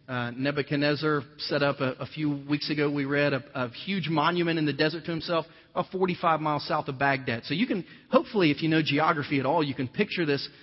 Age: 30-49